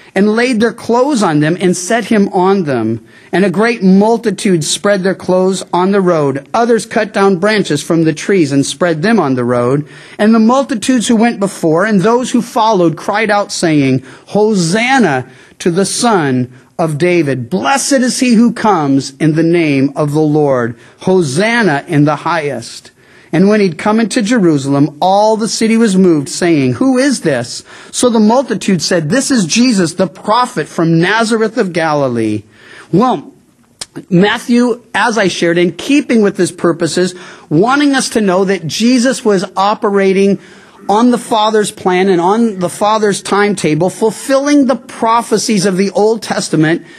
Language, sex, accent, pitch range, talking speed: English, male, American, 170-230 Hz, 165 wpm